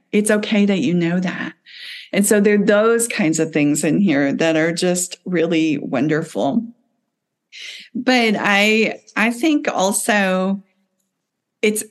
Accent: American